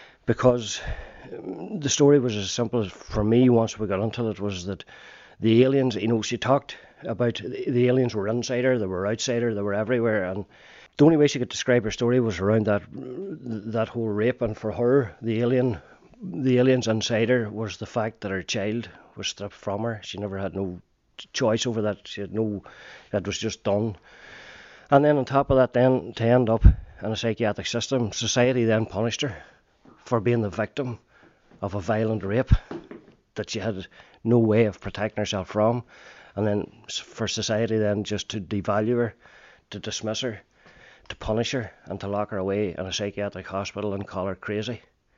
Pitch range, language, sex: 100-120 Hz, English, male